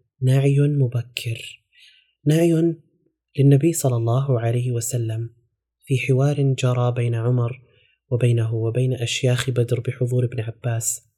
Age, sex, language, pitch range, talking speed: 20-39, male, Arabic, 120-130 Hz, 105 wpm